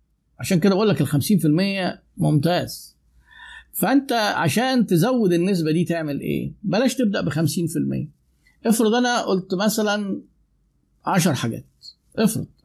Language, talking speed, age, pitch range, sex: Arabic, 120 wpm, 50-69, 155-210 Hz, male